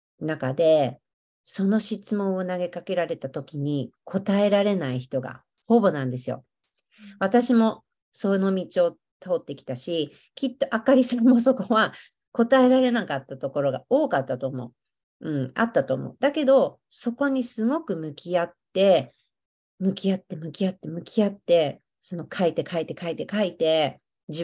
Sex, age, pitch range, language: female, 40-59, 155-225 Hz, Japanese